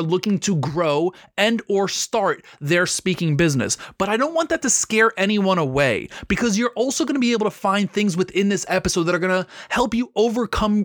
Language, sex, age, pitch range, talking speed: English, male, 30-49, 165-225 Hz, 210 wpm